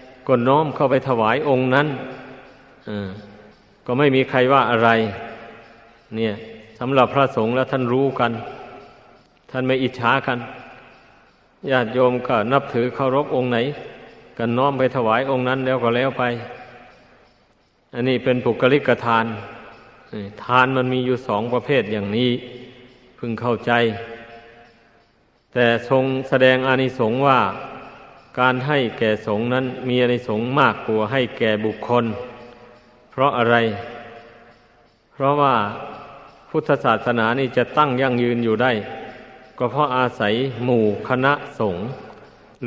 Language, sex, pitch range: Thai, male, 115-130 Hz